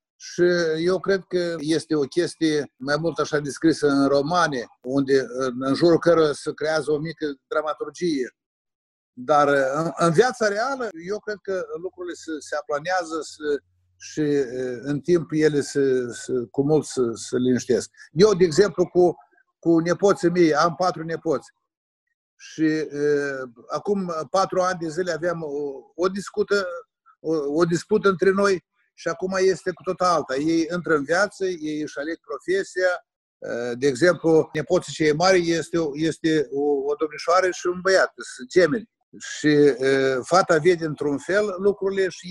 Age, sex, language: 50-69, male, Romanian